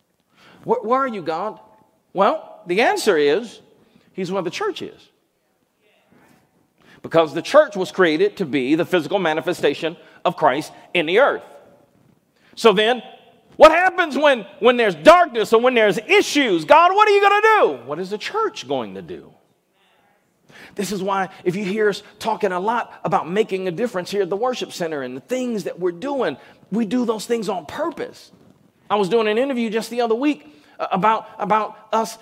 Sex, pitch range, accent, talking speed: male, 205-280 Hz, American, 180 wpm